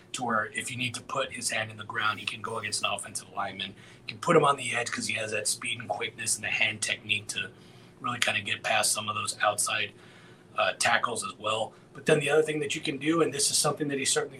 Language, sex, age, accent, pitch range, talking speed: English, male, 30-49, American, 115-145 Hz, 275 wpm